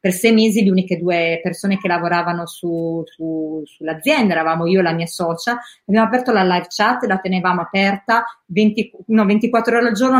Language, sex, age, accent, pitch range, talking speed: Italian, female, 30-49, native, 180-235 Hz, 190 wpm